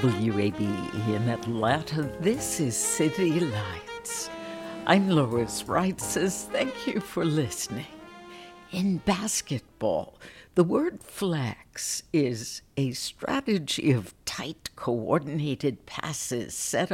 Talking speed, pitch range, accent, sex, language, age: 95 wpm, 115-165 Hz, American, female, English, 60-79